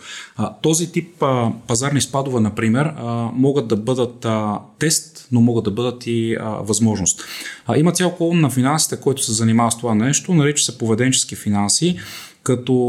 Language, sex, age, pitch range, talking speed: Bulgarian, male, 30-49, 115-135 Hz, 170 wpm